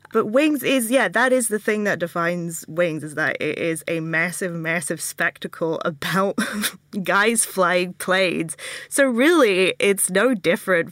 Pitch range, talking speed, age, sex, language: 170-210 Hz, 155 wpm, 20-39, female, English